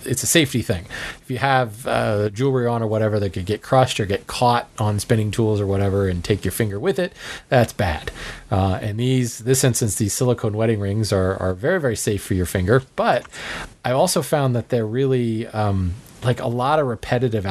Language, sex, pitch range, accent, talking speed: English, male, 105-130 Hz, American, 215 wpm